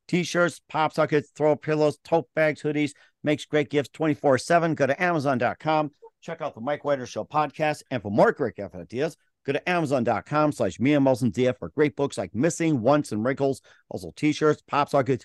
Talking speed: 170 wpm